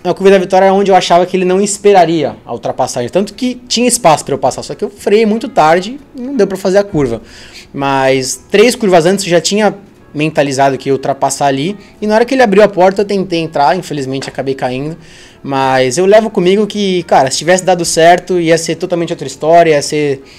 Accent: Brazilian